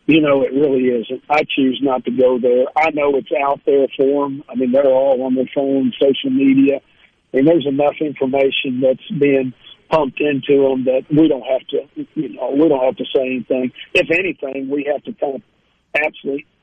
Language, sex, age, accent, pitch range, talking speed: English, male, 50-69, American, 135-160 Hz, 205 wpm